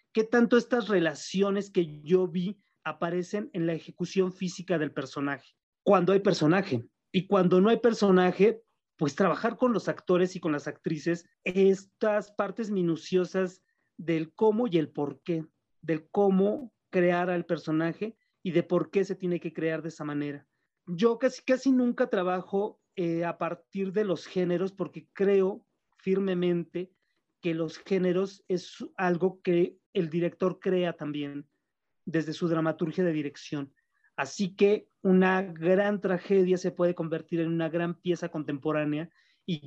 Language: Spanish